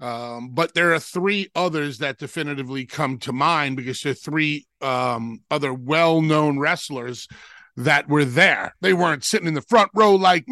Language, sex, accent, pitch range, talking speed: English, male, American, 145-195 Hz, 170 wpm